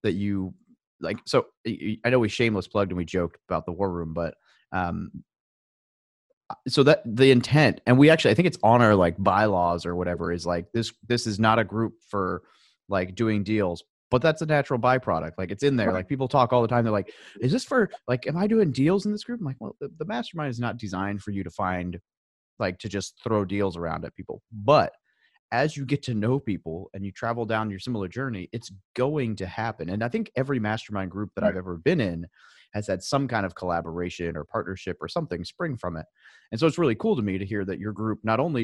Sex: male